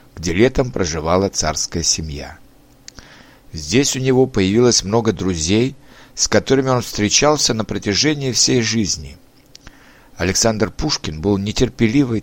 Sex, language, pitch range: male, Russian, 100-135 Hz